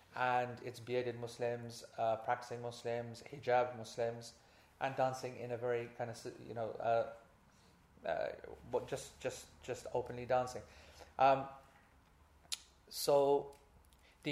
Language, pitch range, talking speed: English, 115-135 Hz, 120 wpm